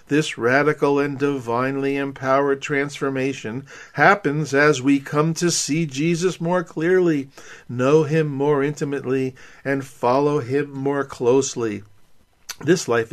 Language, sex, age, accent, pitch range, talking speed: English, male, 50-69, American, 130-165 Hz, 120 wpm